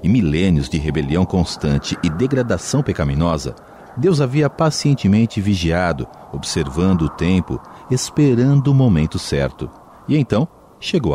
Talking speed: 120 wpm